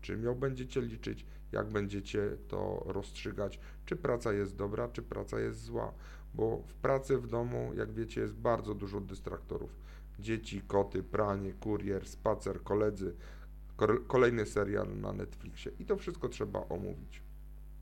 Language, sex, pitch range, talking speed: Polish, male, 100-120 Hz, 140 wpm